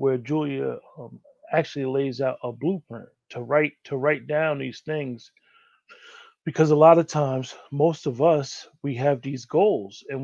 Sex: male